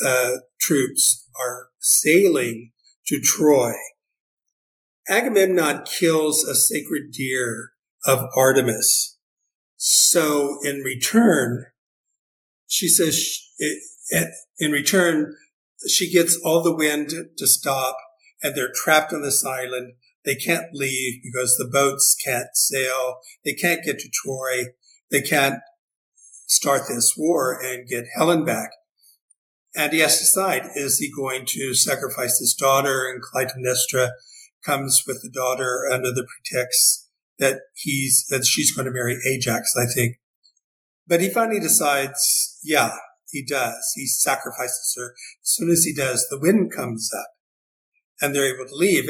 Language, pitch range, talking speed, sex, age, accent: English, 125-160 Hz, 135 wpm, male, 50-69, American